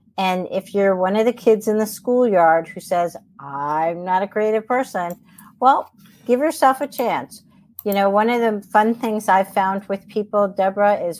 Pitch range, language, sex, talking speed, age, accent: 185-225 Hz, English, female, 190 wpm, 50-69, American